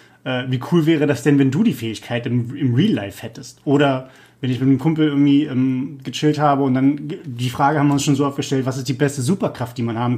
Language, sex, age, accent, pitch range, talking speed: German, male, 30-49, German, 125-160 Hz, 250 wpm